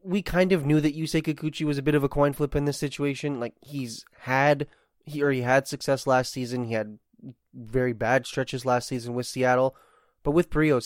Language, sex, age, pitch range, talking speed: English, male, 20-39, 125-145 Hz, 210 wpm